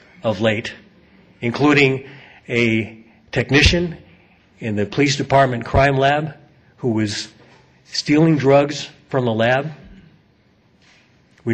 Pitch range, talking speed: 105-135 Hz, 100 wpm